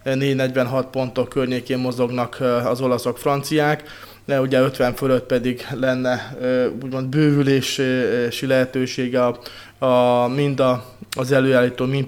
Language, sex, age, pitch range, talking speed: Hungarian, male, 20-39, 120-135 Hz, 110 wpm